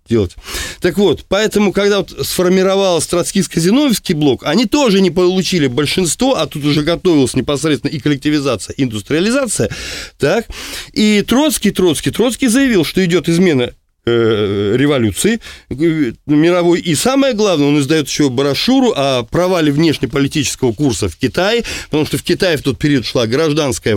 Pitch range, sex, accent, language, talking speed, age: 135-185 Hz, male, native, Russian, 135 wpm, 20-39